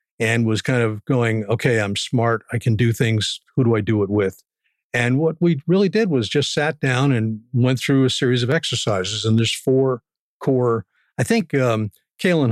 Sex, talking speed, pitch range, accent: male, 200 wpm, 110-130 Hz, American